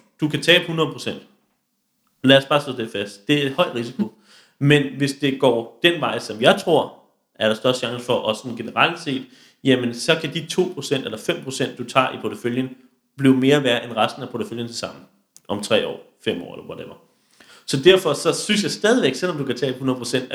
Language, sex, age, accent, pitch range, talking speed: Danish, male, 30-49, native, 125-160 Hz, 205 wpm